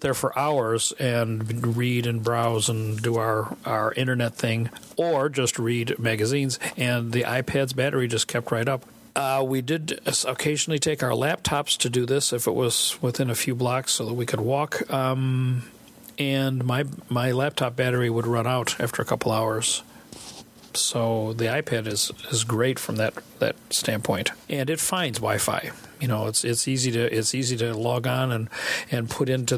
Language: English